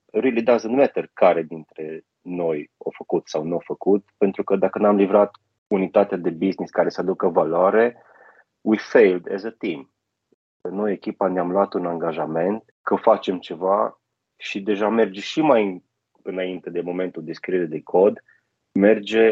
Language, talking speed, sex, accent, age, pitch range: Romanian, 160 wpm, male, native, 30-49, 95-115 Hz